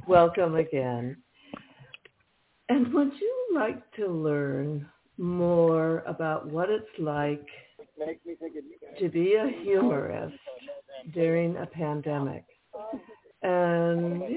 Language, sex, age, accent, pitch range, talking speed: English, female, 60-79, American, 150-195 Hz, 90 wpm